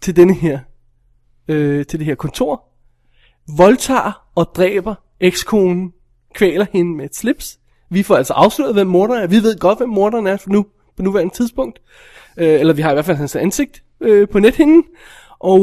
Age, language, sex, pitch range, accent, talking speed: 20-39, Danish, male, 170-220 Hz, native, 180 wpm